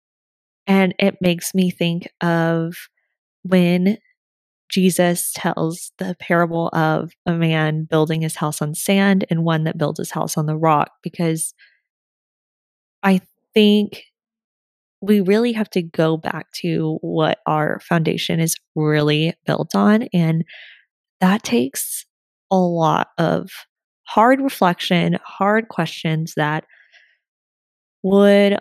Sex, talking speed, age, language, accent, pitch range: female, 120 wpm, 20-39, English, American, 165-200 Hz